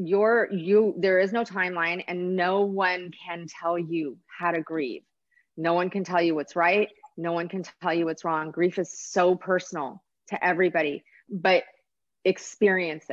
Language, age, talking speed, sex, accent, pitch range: English, 30-49, 170 wpm, female, American, 170-205 Hz